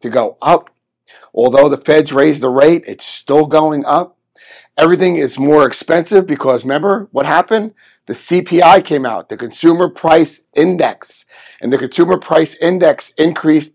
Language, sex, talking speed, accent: English, male, 150 wpm, American